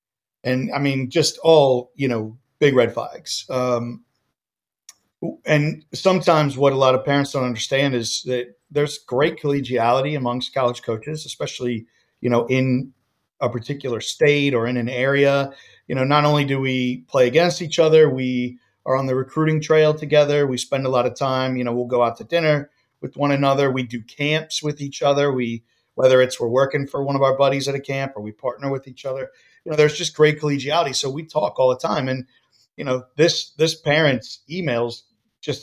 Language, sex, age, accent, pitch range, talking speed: English, male, 40-59, American, 125-150 Hz, 195 wpm